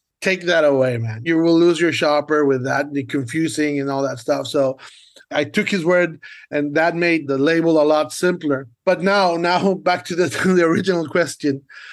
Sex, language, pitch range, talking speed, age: male, English, 145-170 Hz, 195 wpm, 30-49